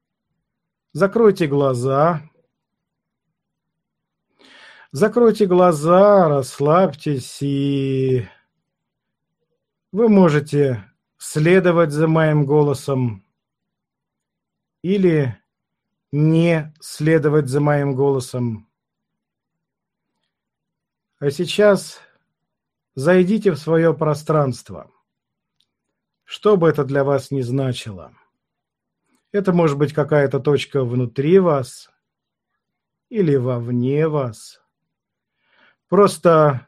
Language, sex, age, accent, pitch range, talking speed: Russian, male, 50-69, native, 140-180 Hz, 70 wpm